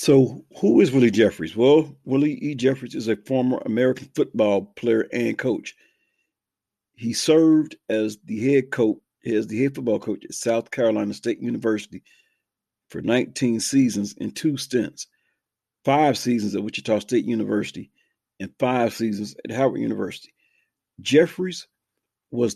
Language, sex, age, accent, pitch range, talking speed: English, male, 50-69, American, 110-135 Hz, 140 wpm